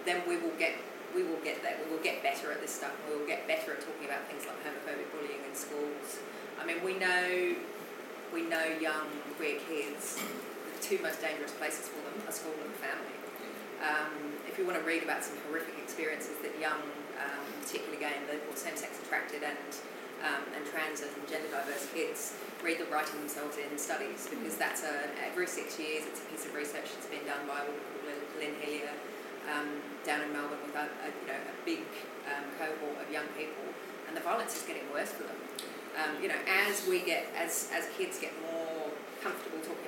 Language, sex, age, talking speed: English, female, 20-39, 205 wpm